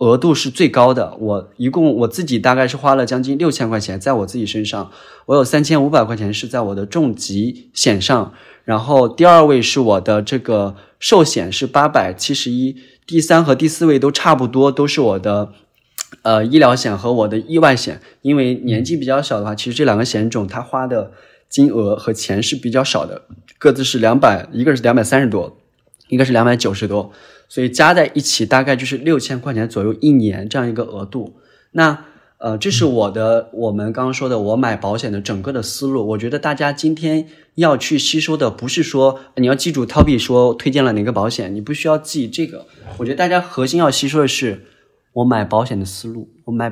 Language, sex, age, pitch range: Chinese, male, 20-39, 110-140 Hz